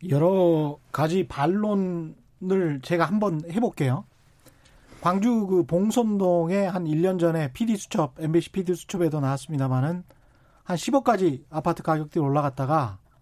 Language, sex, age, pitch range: Korean, male, 40-59, 140-200 Hz